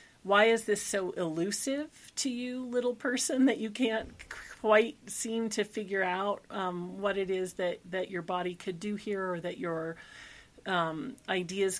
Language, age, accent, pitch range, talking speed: English, 40-59, American, 190-240 Hz, 170 wpm